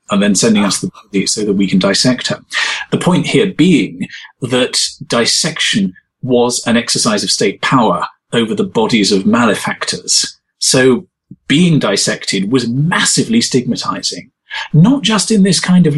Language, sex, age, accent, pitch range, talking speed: English, male, 40-59, British, 120-195 Hz, 155 wpm